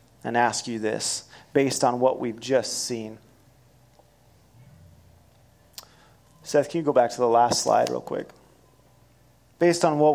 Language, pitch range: English, 120-150 Hz